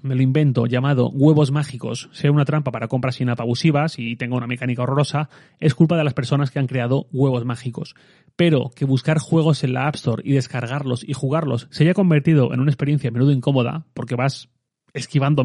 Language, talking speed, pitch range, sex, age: Spanish, 200 wpm, 130-150 Hz, male, 30-49